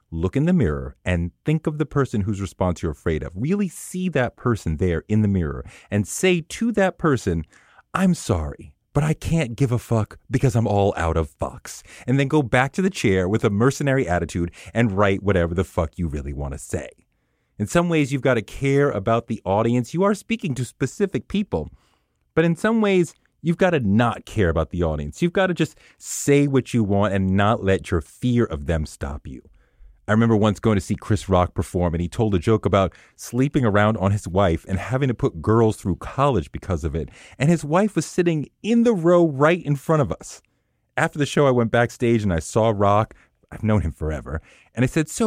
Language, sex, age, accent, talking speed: English, male, 30-49, American, 225 wpm